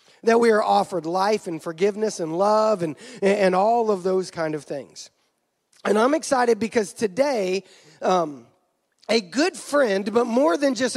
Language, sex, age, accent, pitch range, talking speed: English, male, 30-49, American, 200-275 Hz, 170 wpm